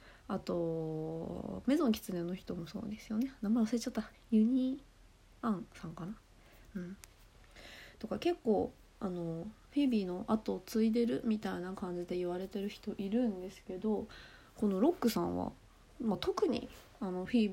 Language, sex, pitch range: Japanese, female, 180-240 Hz